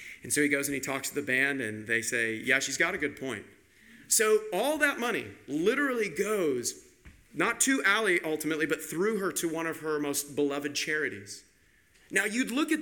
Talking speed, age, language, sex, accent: 200 wpm, 40-59, English, male, American